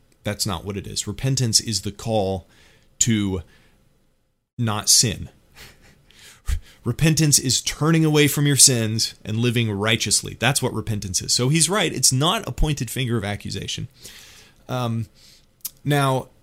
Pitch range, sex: 105-135 Hz, male